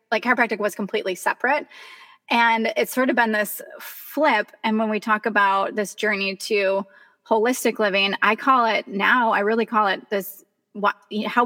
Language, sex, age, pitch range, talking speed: English, female, 20-39, 200-235 Hz, 170 wpm